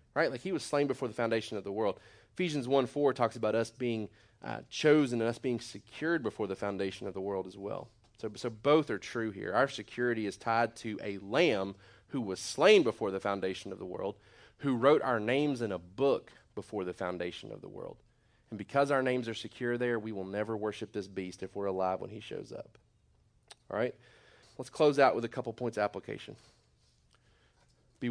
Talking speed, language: 210 wpm, English